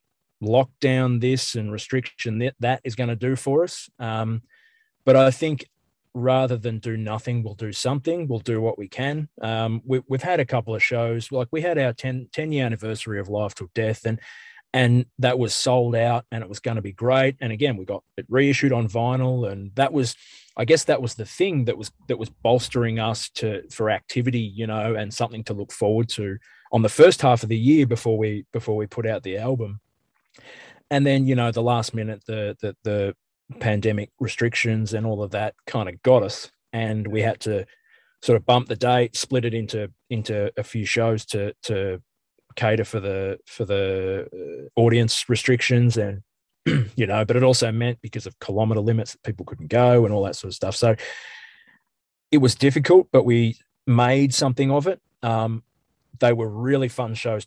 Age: 20-39